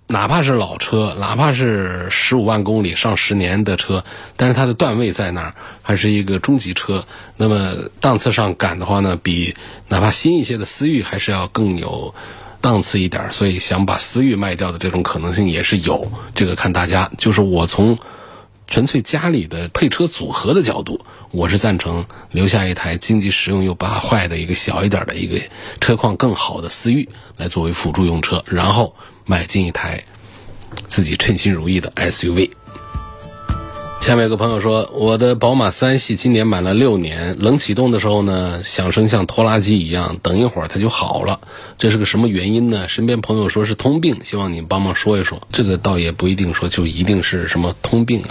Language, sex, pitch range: Chinese, male, 90-115 Hz